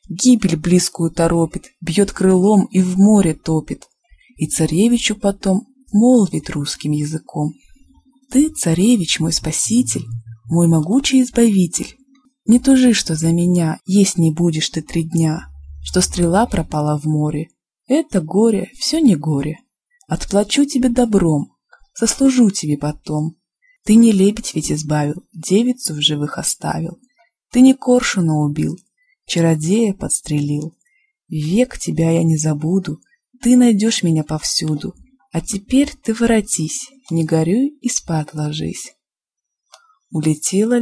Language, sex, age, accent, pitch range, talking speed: Russian, female, 20-39, native, 160-245 Hz, 125 wpm